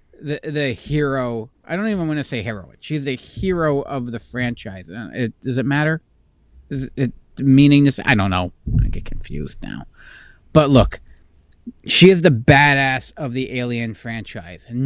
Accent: American